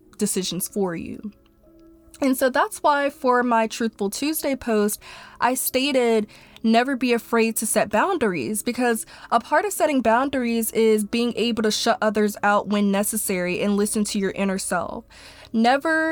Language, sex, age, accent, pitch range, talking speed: English, female, 20-39, American, 215-255 Hz, 155 wpm